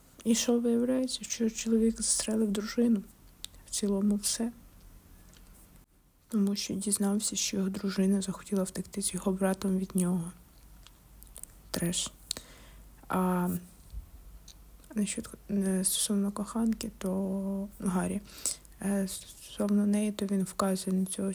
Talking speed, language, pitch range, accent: 105 wpm, Ukrainian, 190-215 Hz, native